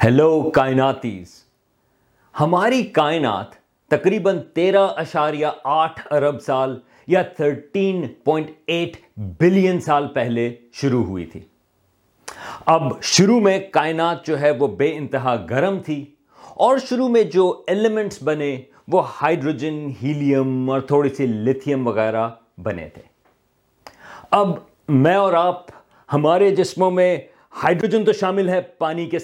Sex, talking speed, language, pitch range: male, 120 wpm, Urdu, 130-175 Hz